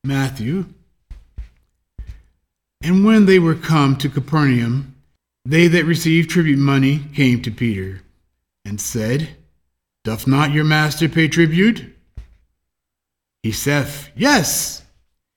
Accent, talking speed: American, 105 wpm